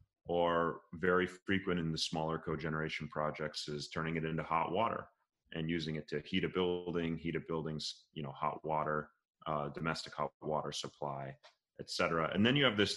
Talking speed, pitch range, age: 185 wpm, 80-90 Hz, 30-49